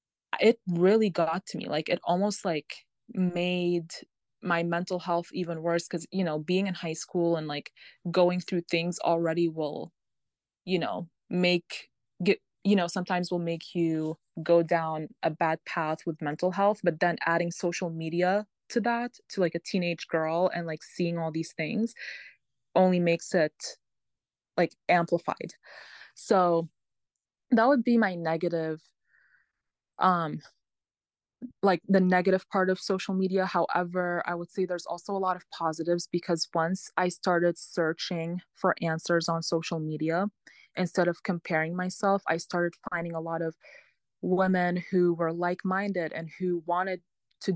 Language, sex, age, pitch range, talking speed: English, female, 20-39, 165-185 Hz, 155 wpm